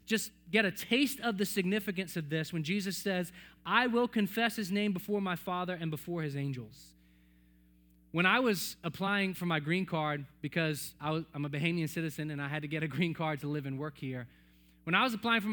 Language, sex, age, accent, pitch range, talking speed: English, male, 20-39, American, 140-210 Hz, 215 wpm